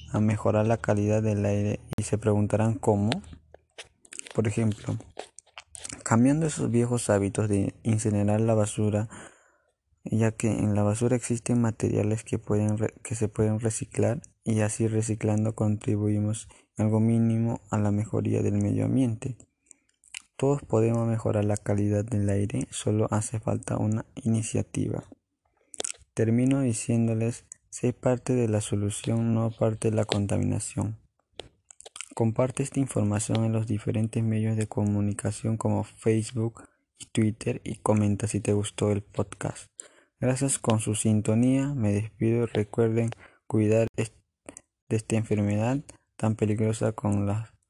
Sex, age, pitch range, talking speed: male, 20-39, 105-115 Hz, 130 wpm